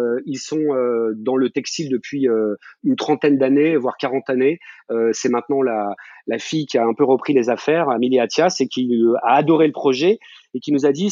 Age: 30-49